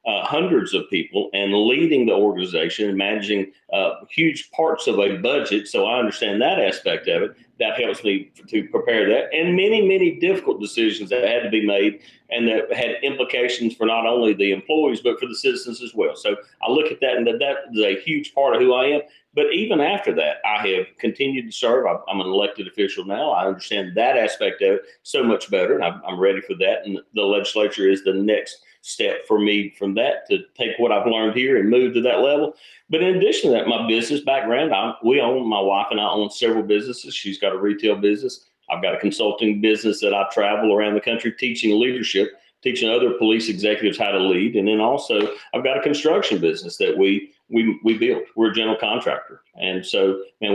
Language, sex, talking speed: English, male, 215 wpm